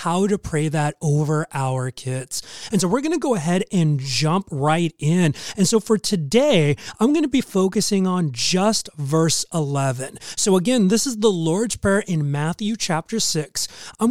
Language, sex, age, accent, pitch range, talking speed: English, male, 30-49, American, 145-200 Hz, 185 wpm